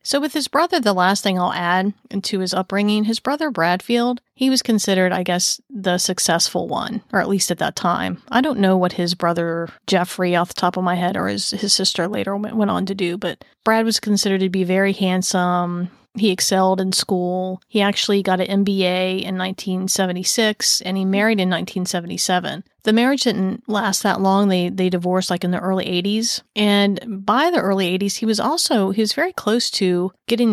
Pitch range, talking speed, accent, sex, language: 185-220 Hz, 200 wpm, American, female, English